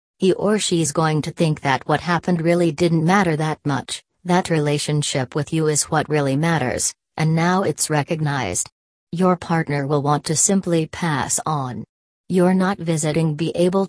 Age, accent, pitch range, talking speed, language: 40-59, American, 145-175 Hz, 170 wpm, English